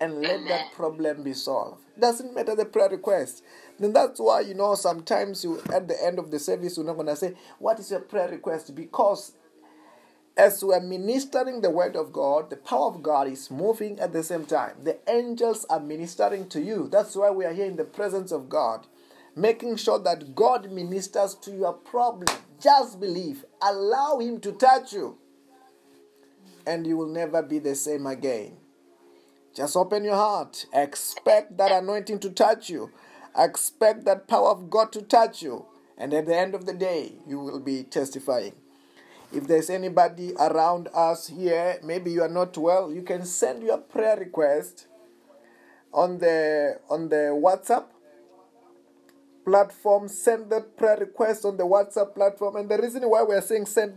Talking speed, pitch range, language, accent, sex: 175 wpm, 160-215 Hz, English, South African, male